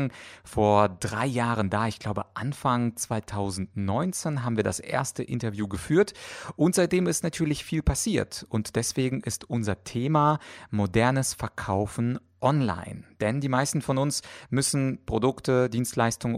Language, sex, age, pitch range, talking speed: German, male, 30-49, 105-135 Hz, 130 wpm